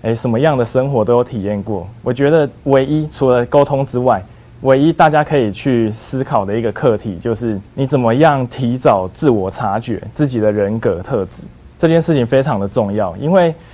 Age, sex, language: 20-39, male, Chinese